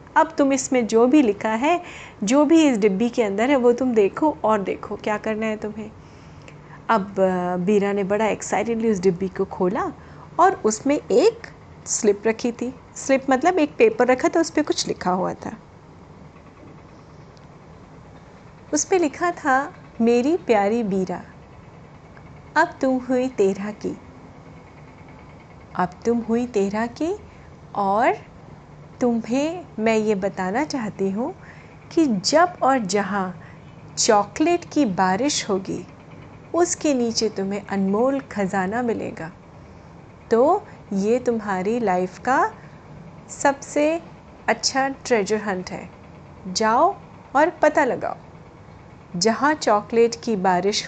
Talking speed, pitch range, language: 125 wpm, 200-280 Hz, Hindi